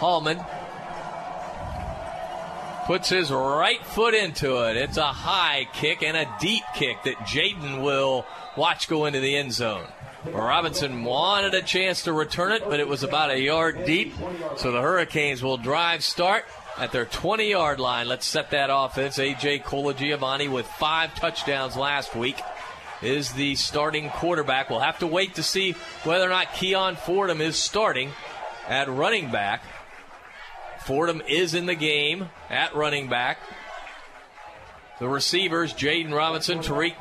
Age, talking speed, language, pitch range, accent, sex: 40-59, 150 wpm, English, 145-190 Hz, American, male